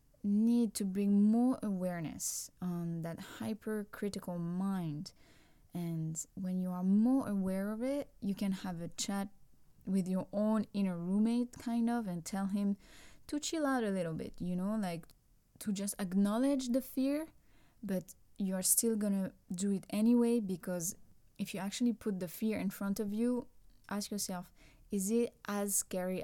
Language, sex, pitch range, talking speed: English, female, 180-220 Hz, 160 wpm